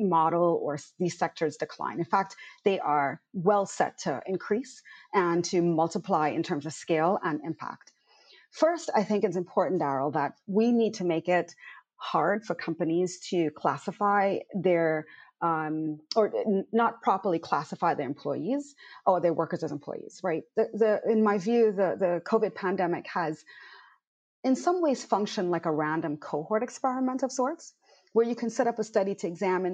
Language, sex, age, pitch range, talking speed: English, female, 30-49, 180-250 Hz, 165 wpm